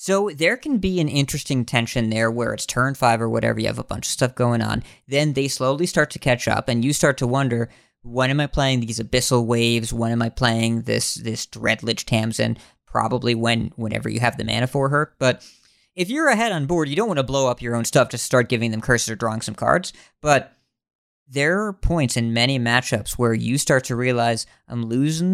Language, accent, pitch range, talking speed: English, American, 115-150 Hz, 225 wpm